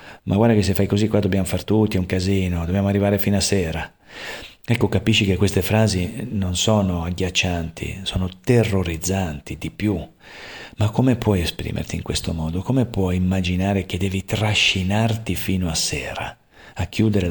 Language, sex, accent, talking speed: Italian, male, native, 165 wpm